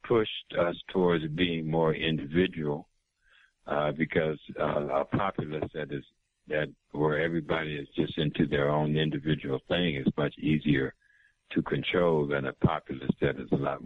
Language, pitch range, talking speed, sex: English, 75-85 Hz, 150 wpm, male